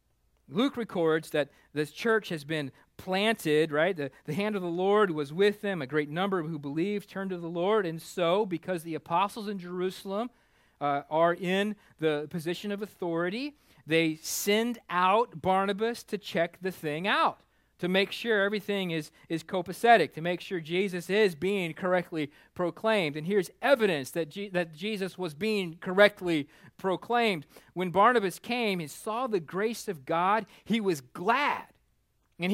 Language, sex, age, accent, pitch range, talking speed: English, male, 40-59, American, 150-195 Hz, 160 wpm